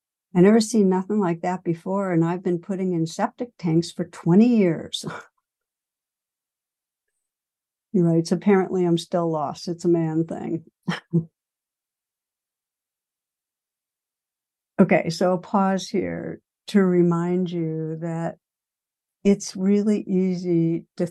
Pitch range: 165-190 Hz